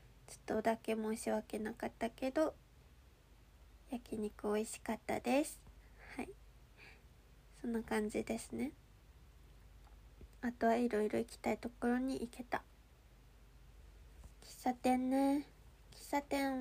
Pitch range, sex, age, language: 215-255 Hz, female, 20-39, Japanese